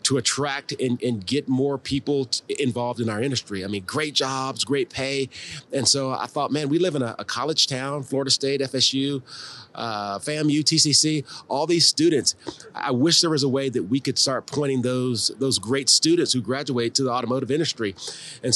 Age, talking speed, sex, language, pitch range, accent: 30-49, 195 wpm, male, English, 125-145 Hz, American